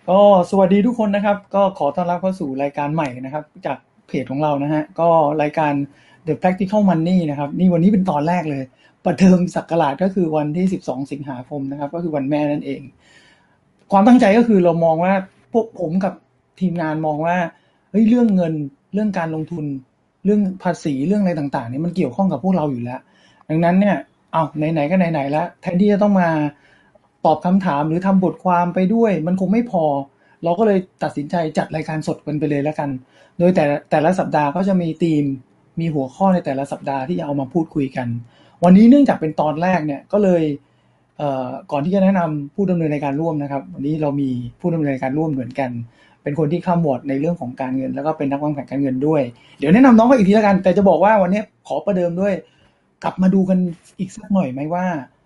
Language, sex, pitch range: English, male, 145-185 Hz